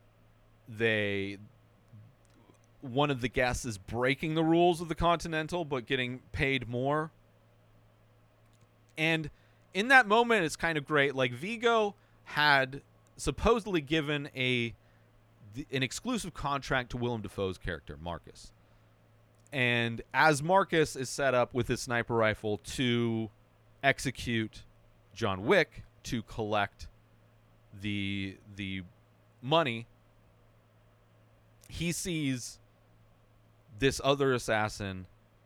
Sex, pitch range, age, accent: male, 105-125 Hz, 30-49, American